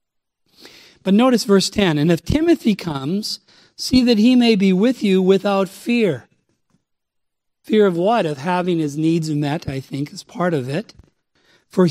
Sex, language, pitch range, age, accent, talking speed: male, English, 165-225 Hz, 50-69, American, 160 wpm